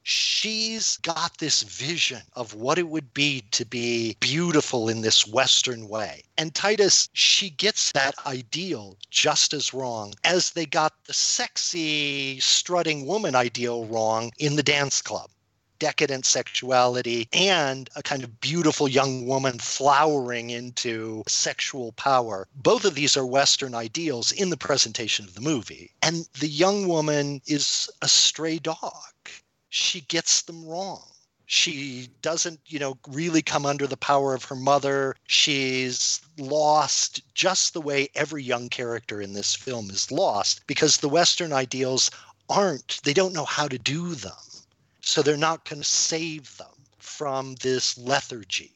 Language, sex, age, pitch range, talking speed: English, male, 50-69, 125-160 Hz, 150 wpm